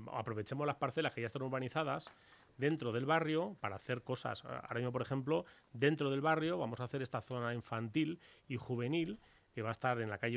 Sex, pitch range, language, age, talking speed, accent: male, 115-145 Hz, Spanish, 30-49, 205 wpm, Spanish